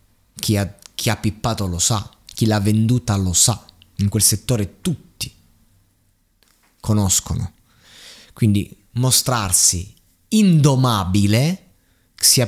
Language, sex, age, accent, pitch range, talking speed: Italian, male, 20-39, native, 95-120 Hz, 95 wpm